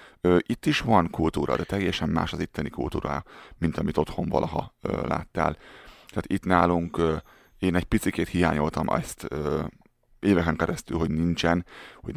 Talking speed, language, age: 140 wpm, Hungarian, 30-49